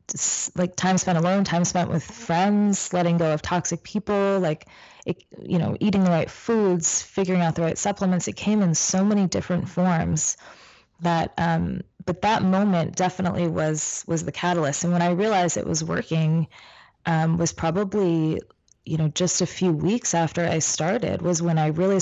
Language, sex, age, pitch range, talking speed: English, female, 20-39, 160-185 Hz, 175 wpm